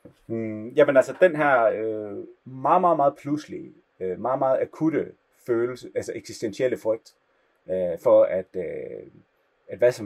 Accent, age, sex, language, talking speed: native, 30-49, male, Danish, 150 wpm